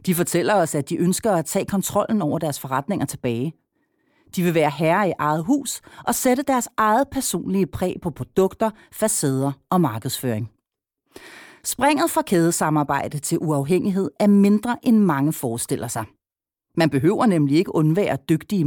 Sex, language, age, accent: female, Danish, 40-59, native